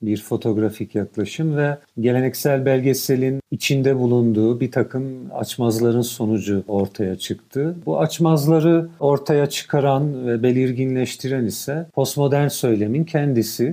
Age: 50-69